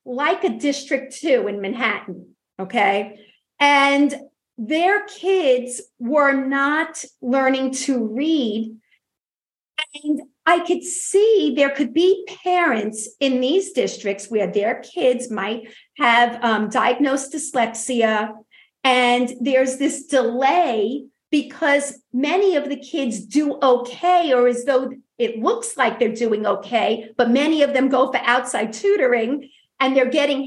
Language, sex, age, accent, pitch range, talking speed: English, female, 50-69, American, 245-320 Hz, 130 wpm